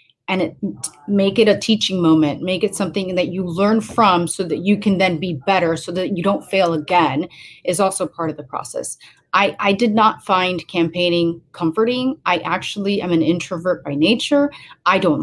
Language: English